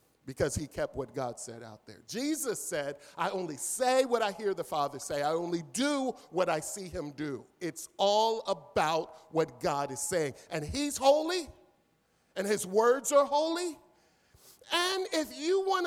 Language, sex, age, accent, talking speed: English, male, 50-69, American, 175 wpm